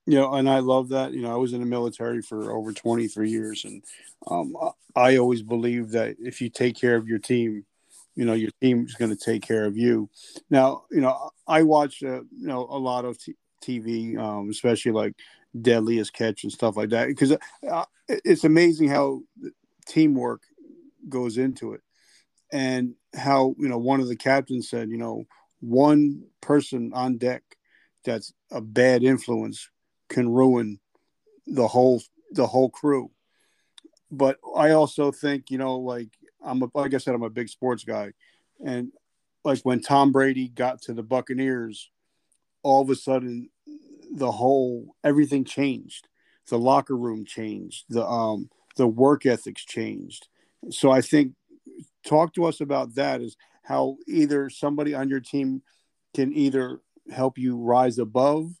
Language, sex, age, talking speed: English, male, 50-69, 165 wpm